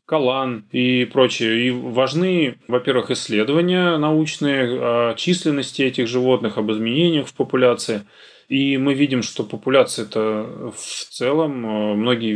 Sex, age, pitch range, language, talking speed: male, 20-39, 110-135 Hz, Russian, 115 wpm